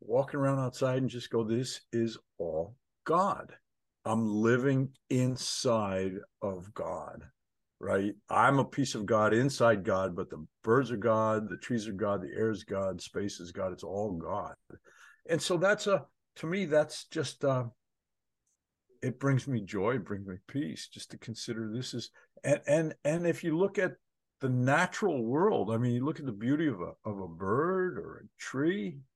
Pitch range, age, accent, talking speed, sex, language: 105-145 Hz, 50-69, American, 185 wpm, male, English